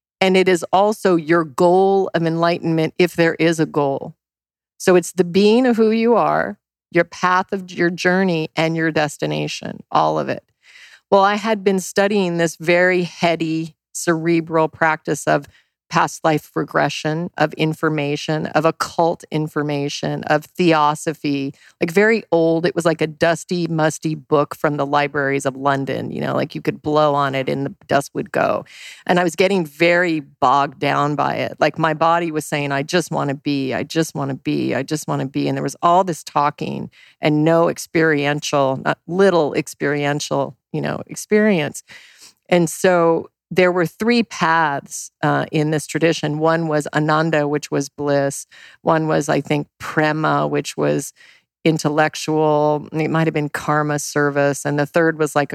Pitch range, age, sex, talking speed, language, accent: 145-175 Hz, 40-59, female, 170 wpm, English, American